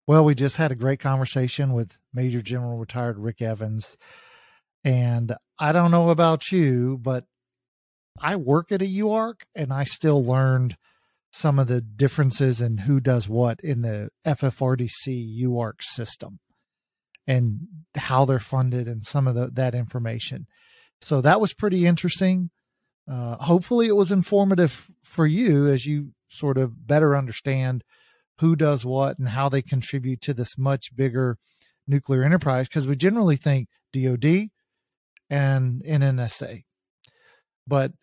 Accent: American